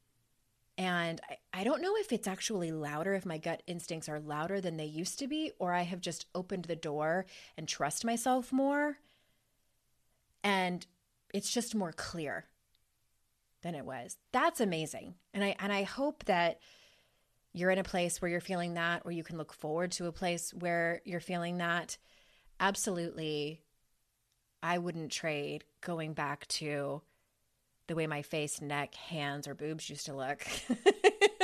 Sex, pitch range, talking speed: female, 155-195 Hz, 160 wpm